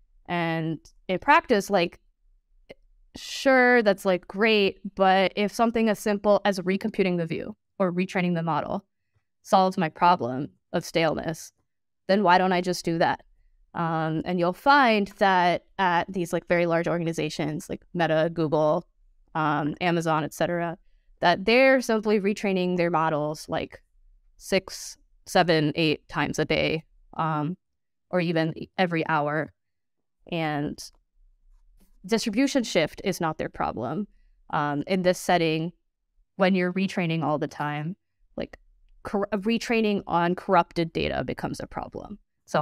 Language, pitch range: English, 160-195 Hz